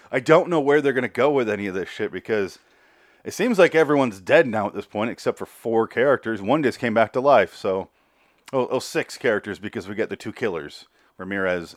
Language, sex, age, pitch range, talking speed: English, male, 30-49, 95-140 Hz, 230 wpm